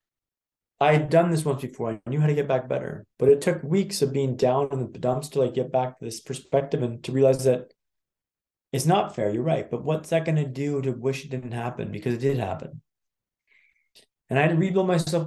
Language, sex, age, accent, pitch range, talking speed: English, male, 20-39, American, 125-150 Hz, 230 wpm